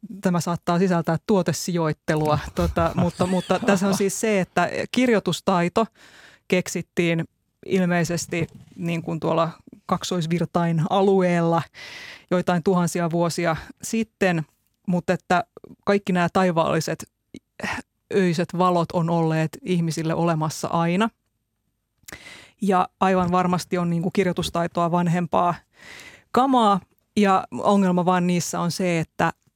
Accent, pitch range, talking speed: native, 165-185 Hz, 105 wpm